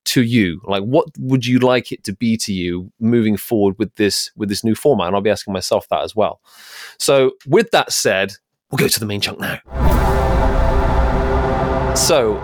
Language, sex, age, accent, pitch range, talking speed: English, male, 30-49, British, 105-150 Hz, 195 wpm